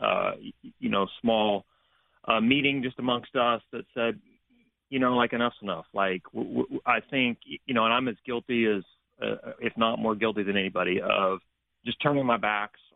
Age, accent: 30-49, American